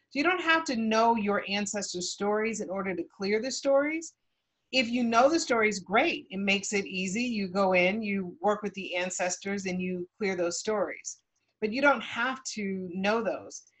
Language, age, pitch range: English, 30-49, 185-230 Hz